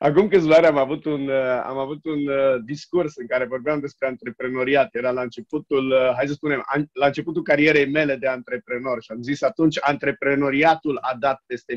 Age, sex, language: 30-49, male, Romanian